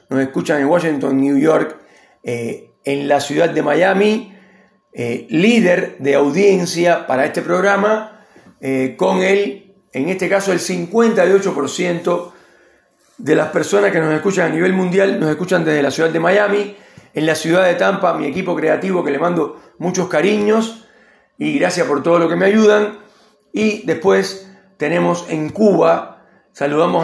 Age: 40-59